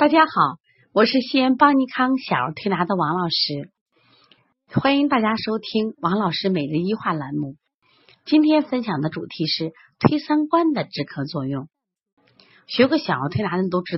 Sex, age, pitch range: female, 30-49, 160-245 Hz